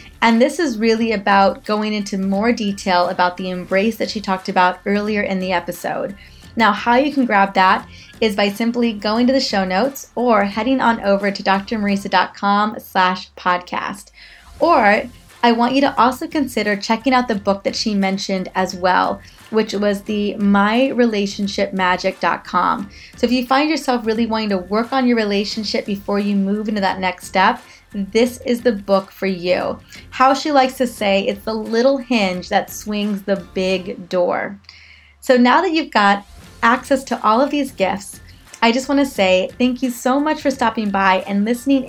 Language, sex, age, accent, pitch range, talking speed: English, female, 20-39, American, 195-250 Hz, 180 wpm